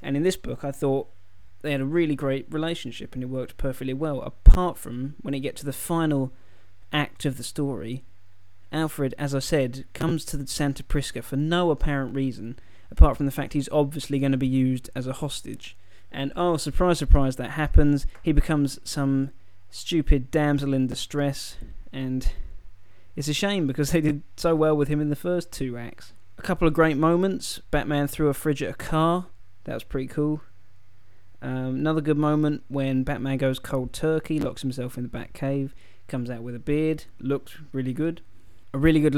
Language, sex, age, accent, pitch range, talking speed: English, male, 20-39, British, 120-150 Hz, 190 wpm